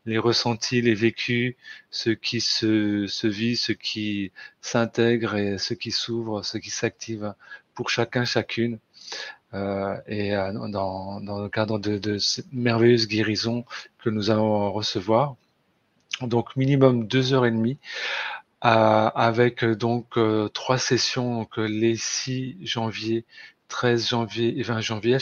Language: French